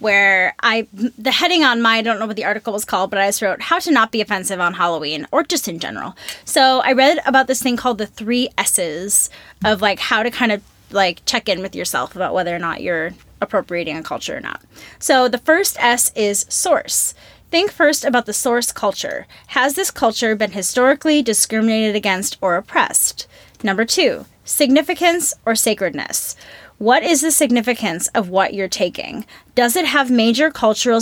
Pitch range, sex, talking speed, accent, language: 200-265 Hz, female, 190 wpm, American, English